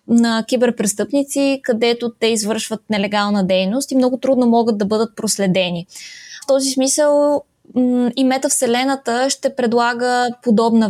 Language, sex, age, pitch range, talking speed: Bulgarian, female, 20-39, 210-255 Hz, 120 wpm